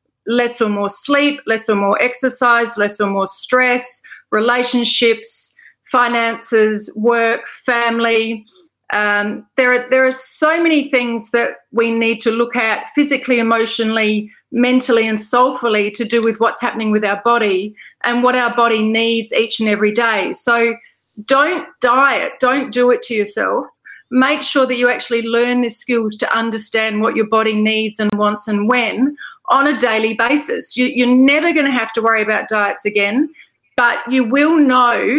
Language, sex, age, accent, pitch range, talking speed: English, female, 30-49, Australian, 220-255 Hz, 160 wpm